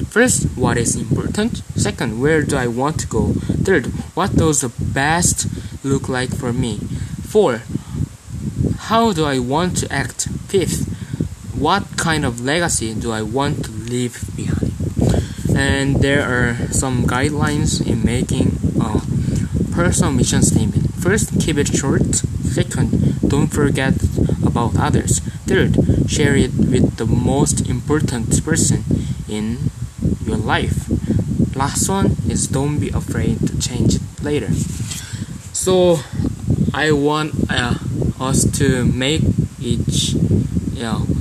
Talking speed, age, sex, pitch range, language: 130 wpm, 20-39, male, 120-145 Hz, English